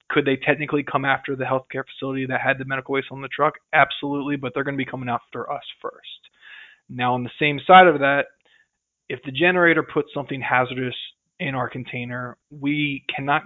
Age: 20-39